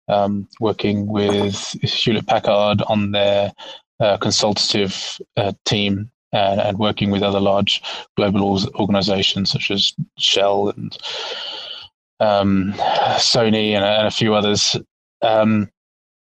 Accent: British